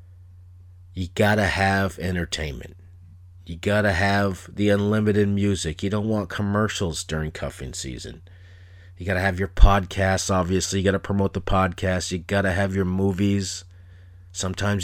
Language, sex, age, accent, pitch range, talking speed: English, male, 30-49, American, 90-105 Hz, 140 wpm